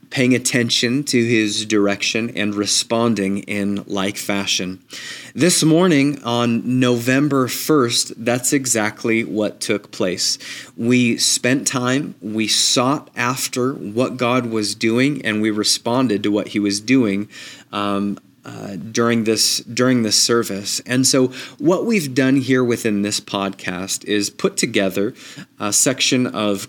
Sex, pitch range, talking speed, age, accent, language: male, 105-130 Hz, 135 wpm, 30-49, American, English